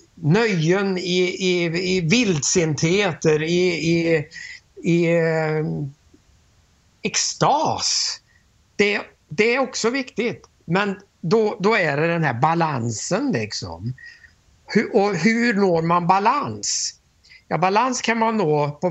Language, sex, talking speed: Swedish, male, 110 wpm